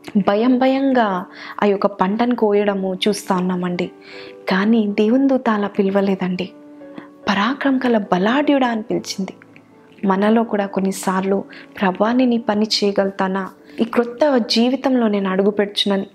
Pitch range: 190-230 Hz